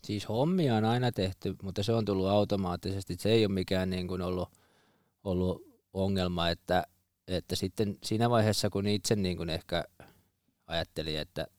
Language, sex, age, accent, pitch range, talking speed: Finnish, male, 20-39, native, 90-105 Hz, 160 wpm